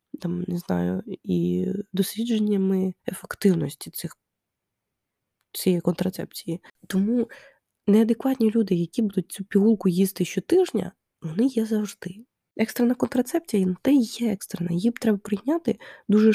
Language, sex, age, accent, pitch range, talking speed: Ukrainian, female, 20-39, native, 190-235 Hz, 115 wpm